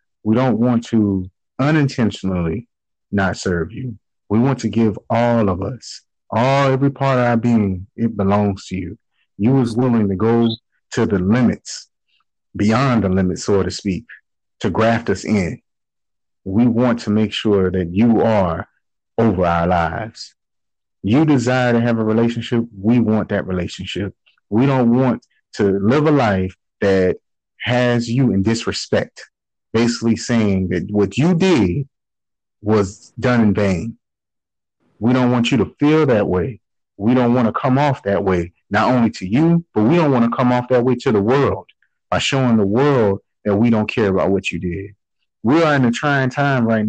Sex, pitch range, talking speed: male, 100-130 Hz, 175 wpm